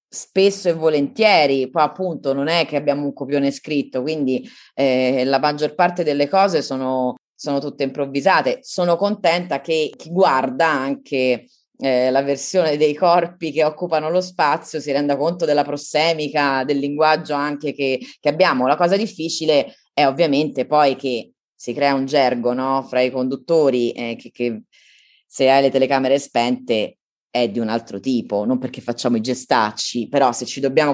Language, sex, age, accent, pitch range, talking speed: Italian, female, 20-39, native, 130-155 Hz, 165 wpm